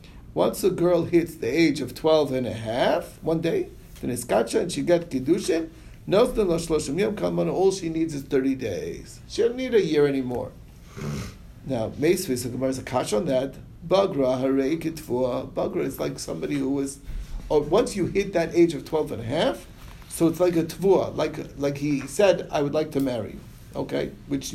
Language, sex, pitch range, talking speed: English, male, 135-170 Hz, 170 wpm